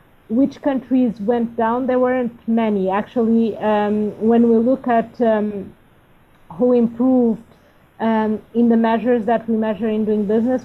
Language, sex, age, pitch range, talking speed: English, female, 30-49, 205-230 Hz, 145 wpm